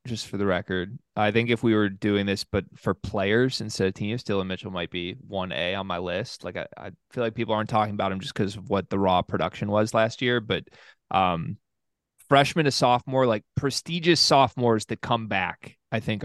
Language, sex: English, male